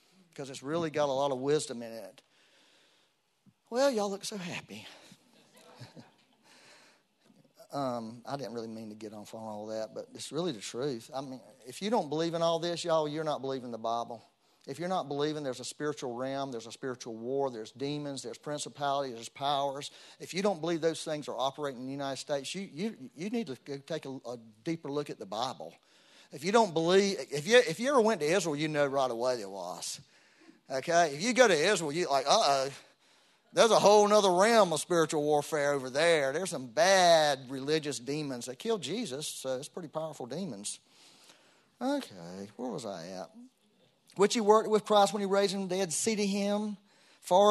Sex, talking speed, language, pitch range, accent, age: male, 205 wpm, English, 135-195 Hz, American, 40-59